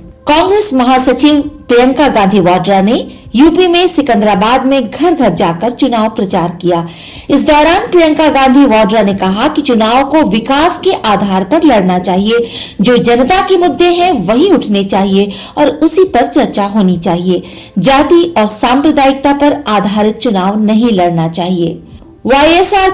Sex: female